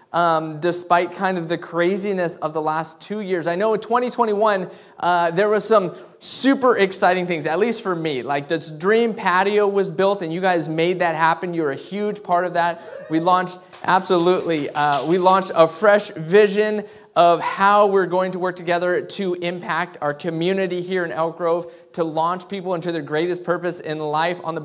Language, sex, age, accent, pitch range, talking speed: English, male, 20-39, American, 170-205 Hz, 190 wpm